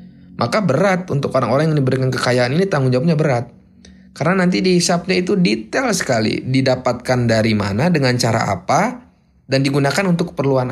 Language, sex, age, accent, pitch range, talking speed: Indonesian, male, 20-39, native, 115-170 Hz, 155 wpm